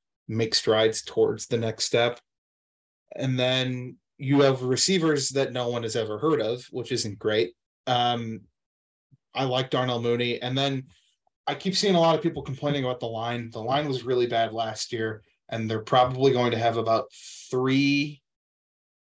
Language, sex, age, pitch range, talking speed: English, male, 20-39, 115-140 Hz, 170 wpm